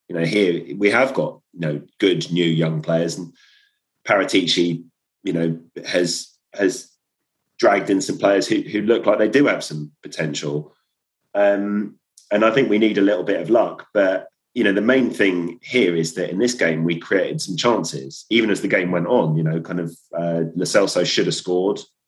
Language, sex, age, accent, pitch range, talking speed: English, male, 30-49, British, 80-100 Hz, 200 wpm